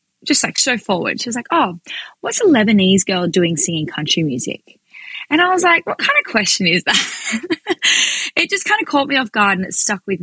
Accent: Australian